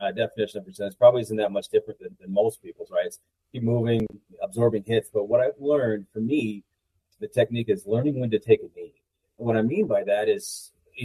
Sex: male